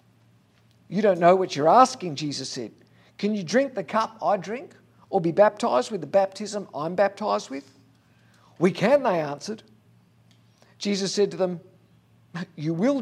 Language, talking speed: English, 155 wpm